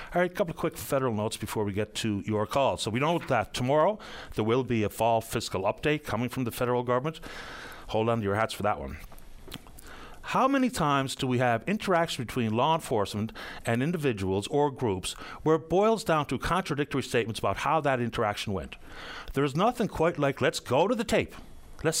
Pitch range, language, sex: 115-165 Hz, English, male